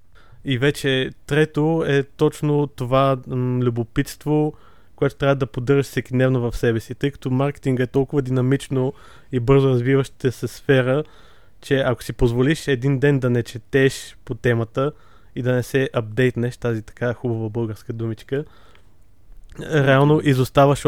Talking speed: 145 wpm